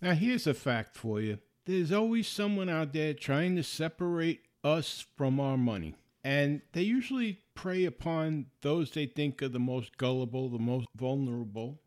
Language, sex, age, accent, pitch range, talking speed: English, male, 50-69, American, 135-180 Hz, 165 wpm